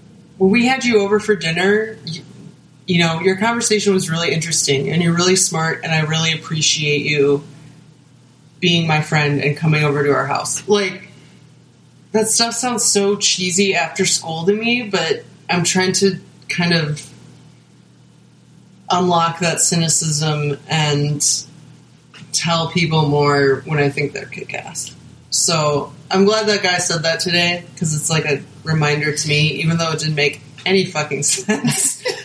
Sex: female